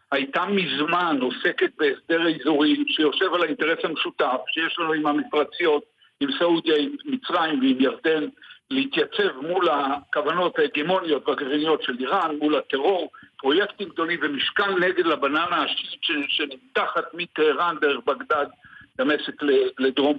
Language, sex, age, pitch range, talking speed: Hebrew, male, 60-79, 160-250 Hz, 120 wpm